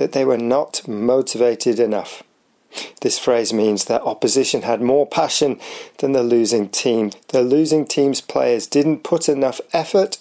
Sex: male